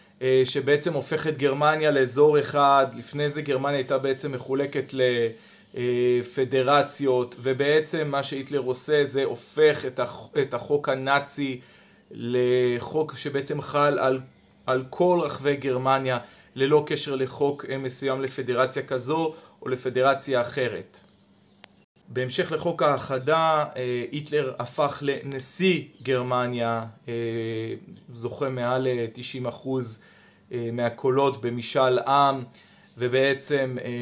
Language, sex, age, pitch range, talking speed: Hebrew, male, 20-39, 125-145 Hz, 70 wpm